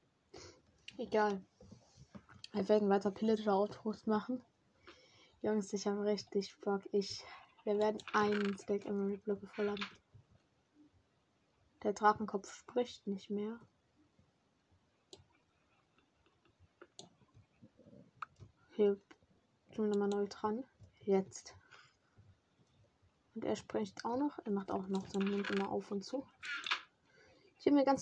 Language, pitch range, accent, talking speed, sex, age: German, 200-230 Hz, German, 110 wpm, female, 20-39